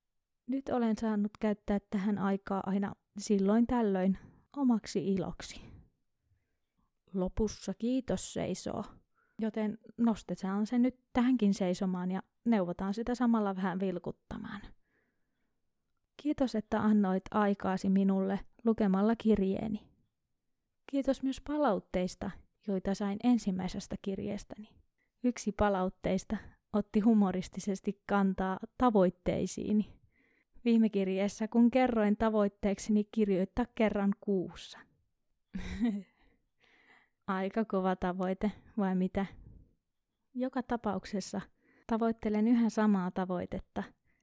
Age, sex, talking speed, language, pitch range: 20-39, female, 90 wpm, Finnish, 195-230 Hz